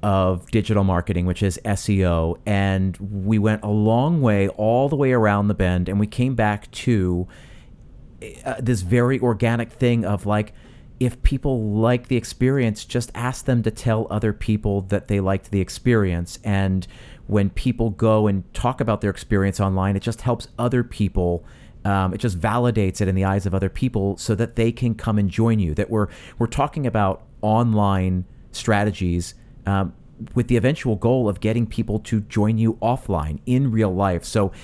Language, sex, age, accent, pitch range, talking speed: English, male, 40-59, American, 100-120 Hz, 180 wpm